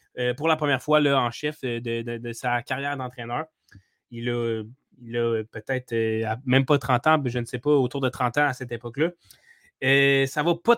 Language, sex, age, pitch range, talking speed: French, male, 20-39, 125-155 Hz, 210 wpm